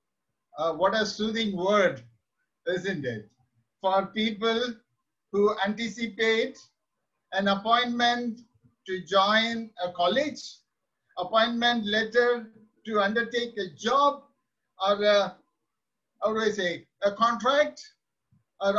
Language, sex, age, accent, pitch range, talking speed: English, male, 50-69, Indian, 195-245 Hz, 100 wpm